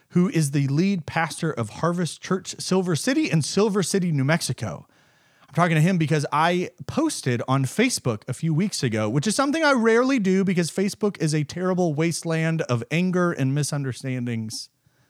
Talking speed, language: 175 wpm, English